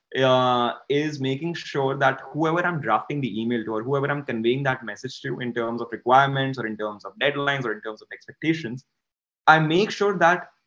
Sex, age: male, 20-39